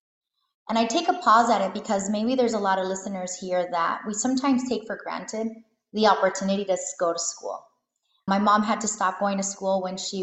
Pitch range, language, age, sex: 185-235 Hz, English, 20-39, female